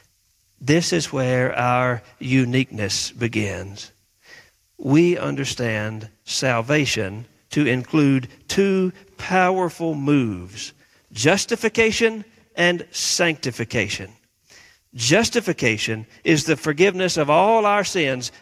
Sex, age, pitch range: male, 50-69, 125-200 Hz